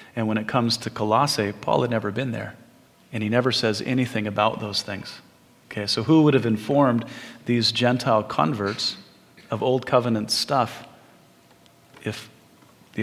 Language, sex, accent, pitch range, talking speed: English, male, American, 110-130 Hz, 155 wpm